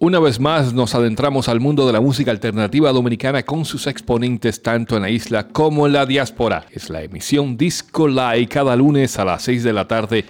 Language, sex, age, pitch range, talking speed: Spanish, male, 40-59, 115-155 Hz, 210 wpm